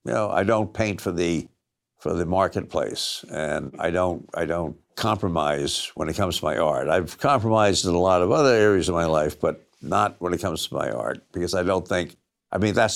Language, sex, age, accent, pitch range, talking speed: English, male, 60-79, American, 85-105 Hz, 220 wpm